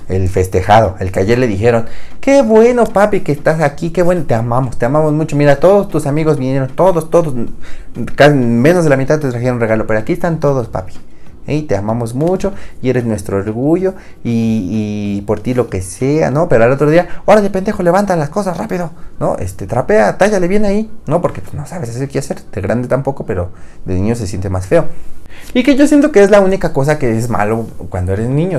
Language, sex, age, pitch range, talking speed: Spanish, male, 30-49, 105-175 Hz, 225 wpm